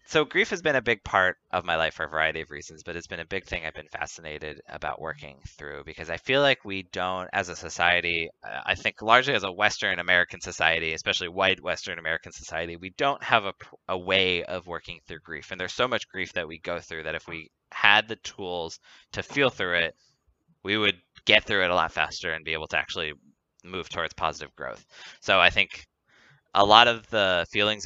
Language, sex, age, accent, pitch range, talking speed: English, male, 20-39, American, 85-100 Hz, 220 wpm